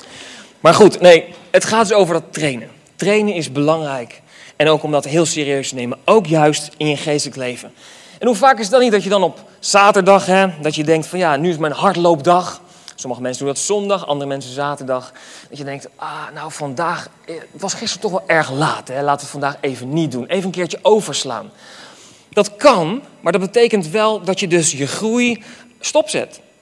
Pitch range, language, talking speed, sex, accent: 150-220 Hz, Dutch, 210 wpm, male, Dutch